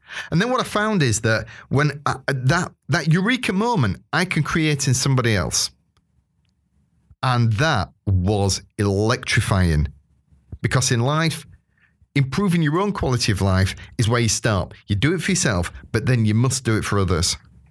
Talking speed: 165 wpm